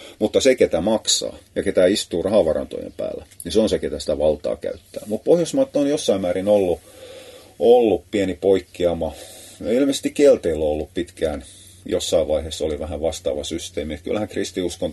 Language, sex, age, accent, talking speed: Finnish, male, 30-49, native, 155 wpm